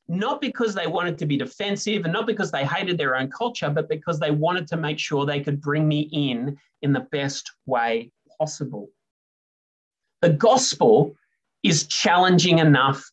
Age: 30-49